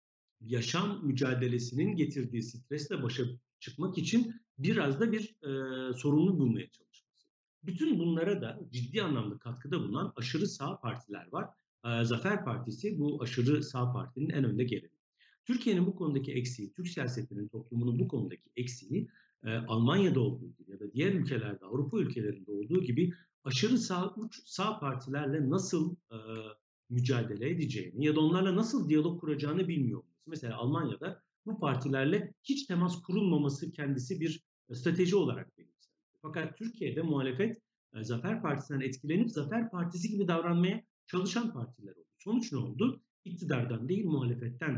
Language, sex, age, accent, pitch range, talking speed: Turkish, male, 50-69, native, 125-185 Hz, 140 wpm